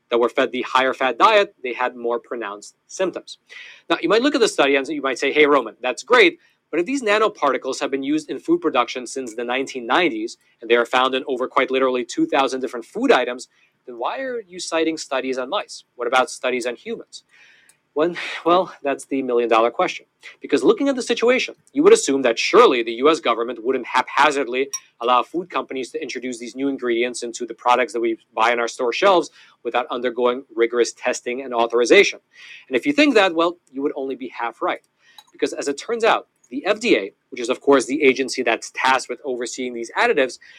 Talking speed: 205 wpm